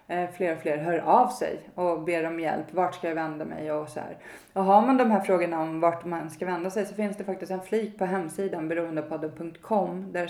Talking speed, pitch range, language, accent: 235 wpm, 160-190 Hz, Swedish, native